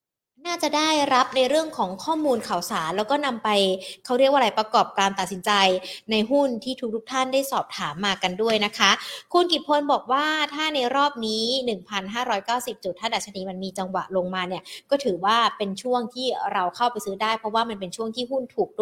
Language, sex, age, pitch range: Thai, female, 20-39, 200-260 Hz